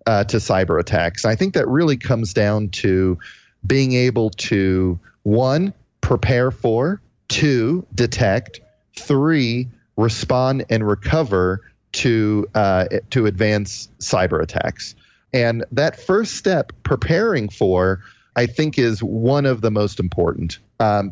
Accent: American